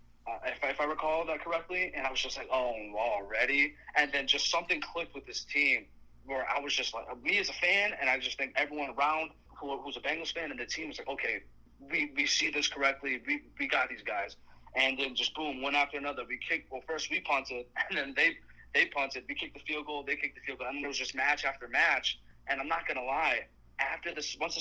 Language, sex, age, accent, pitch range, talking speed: English, male, 30-49, American, 125-150 Hz, 250 wpm